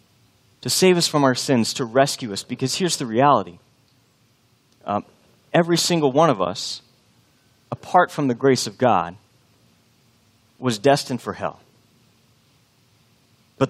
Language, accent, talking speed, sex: English, American, 130 wpm, male